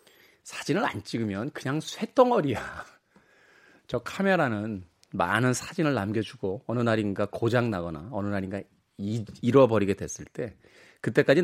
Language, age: Korean, 30-49